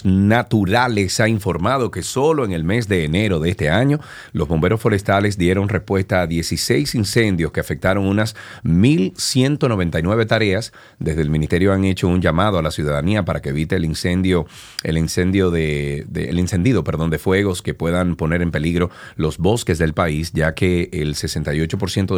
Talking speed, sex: 170 wpm, male